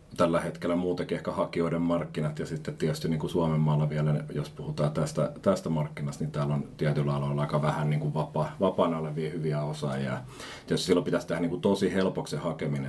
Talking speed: 190 wpm